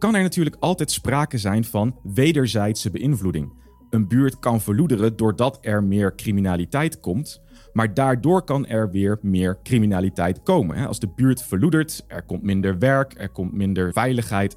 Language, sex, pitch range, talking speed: Dutch, male, 100-135 Hz, 155 wpm